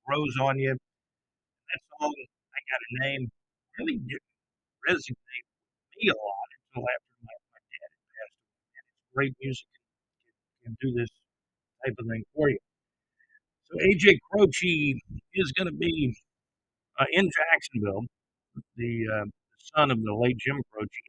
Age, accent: 50-69, American